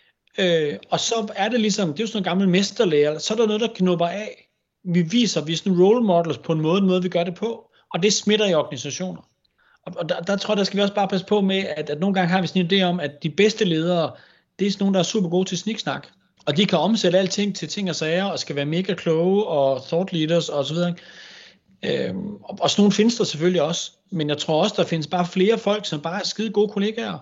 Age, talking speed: 30-49, 265 wpm